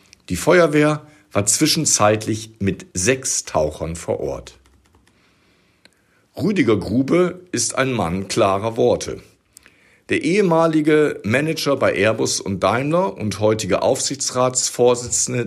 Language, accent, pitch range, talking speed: German, German, 95-140 Hz, 100 wpm